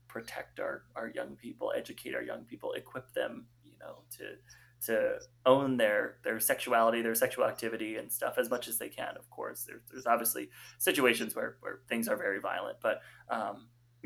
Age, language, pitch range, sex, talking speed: 20-39, English, 115-145 Hz, male, 180 wpm